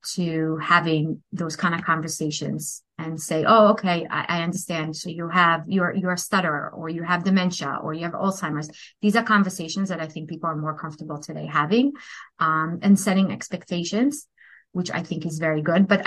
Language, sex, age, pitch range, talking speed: English, female, 30-49, 160-195 Hz, 190 wpm